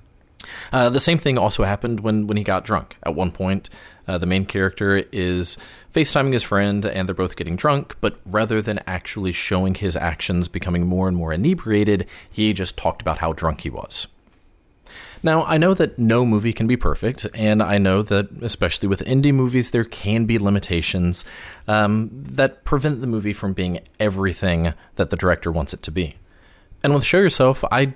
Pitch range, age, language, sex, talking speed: 95-135 Hz, 30-49, English, male, 190 wpm